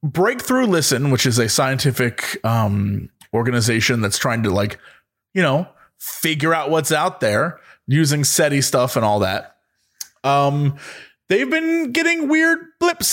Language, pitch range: English, 140-210 Hz